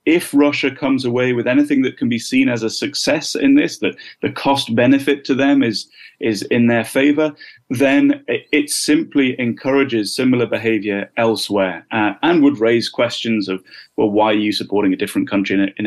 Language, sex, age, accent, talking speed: English, male, 30-49, British, 180 wpm